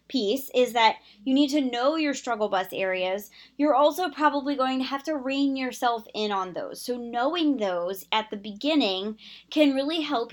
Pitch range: 210-275 Hz